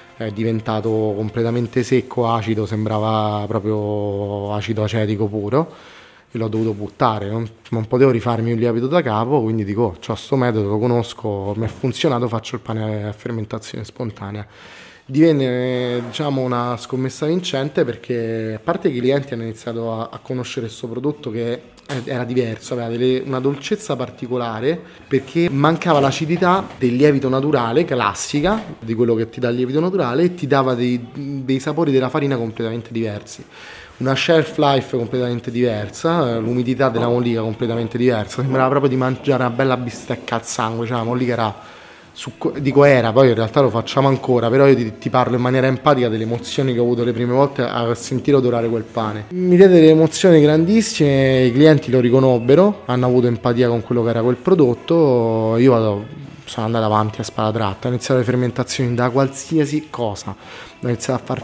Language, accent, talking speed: Italian, native, 170 wpm